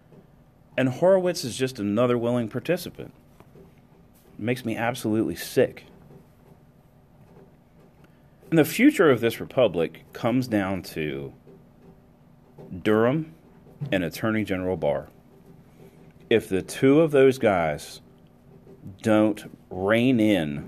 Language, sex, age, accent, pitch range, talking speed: English, male, 40-59, American, 80-110 Hz, 100 wpm